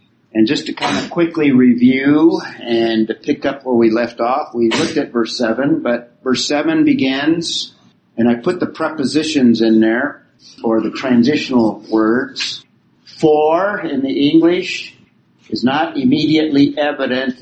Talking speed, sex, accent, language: 145 wpm, male, American, English